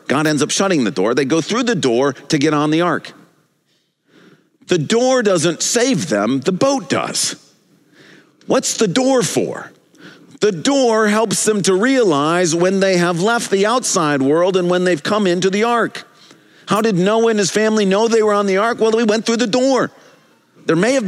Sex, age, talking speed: male, 50-69, 195 wpm